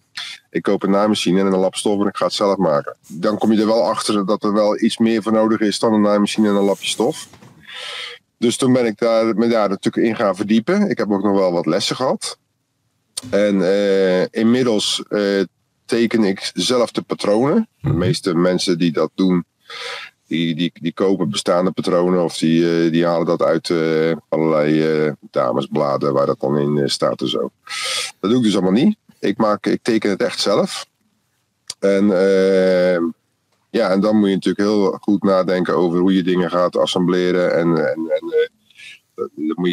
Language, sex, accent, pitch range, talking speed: Dutch, male, Dutch, 90-115 Hz, 185 wpm